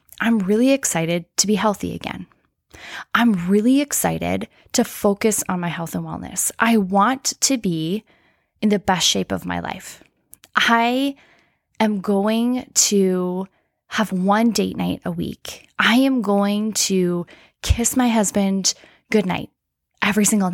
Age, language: 10-29, English